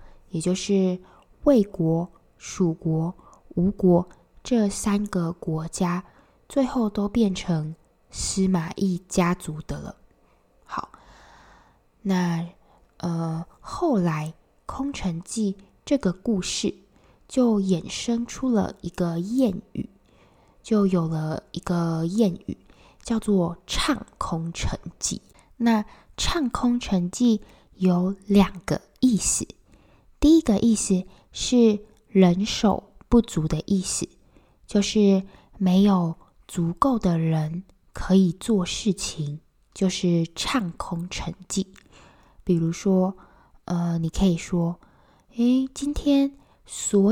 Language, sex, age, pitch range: Chinese, female, 10-29, 170-220 Hz